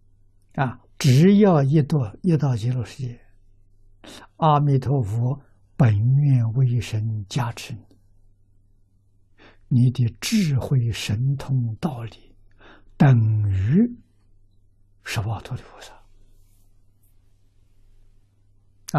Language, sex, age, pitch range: Chinese, male, 60-79, 100-120 Hz